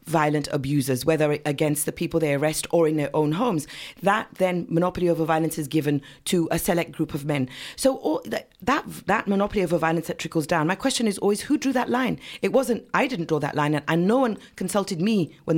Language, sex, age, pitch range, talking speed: English, female, 40-59, 150-205 Hz, 225 wpm